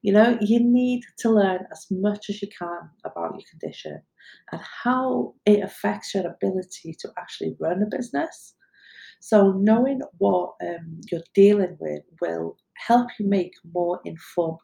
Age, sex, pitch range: 40-59, female, 160-210 Hz